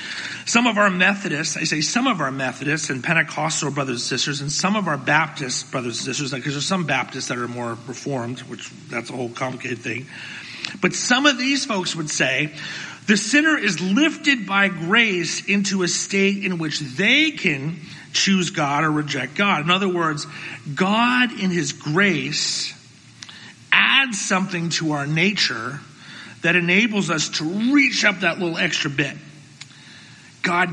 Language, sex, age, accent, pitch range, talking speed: English, male, 40-59, American, 150-210 Hz, 165 wpm